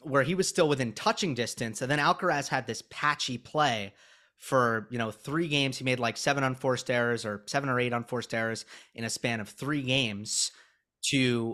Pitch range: 115-145 Hz